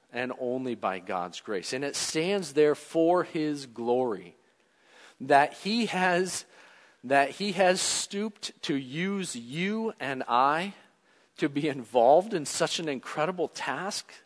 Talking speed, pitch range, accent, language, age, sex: 125 wpm, 130-205 Hz, American, English, 40-59, male